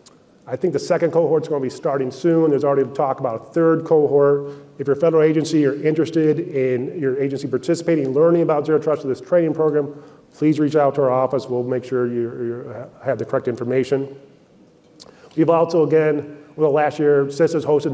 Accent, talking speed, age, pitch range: American, 195 wpm, 30-49, 135-155 Hz